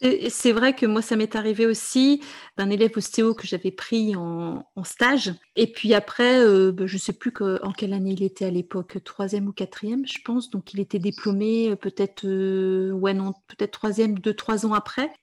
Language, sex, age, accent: French, female, 40-59, French